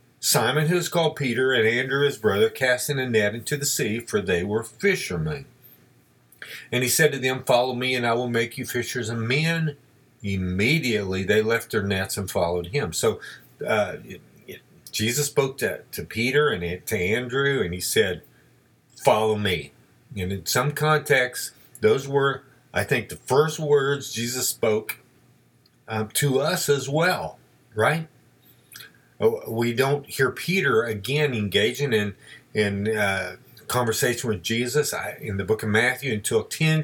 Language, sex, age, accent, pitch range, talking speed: English, male, 50-69, American, 105-145 Hz, 155 wpm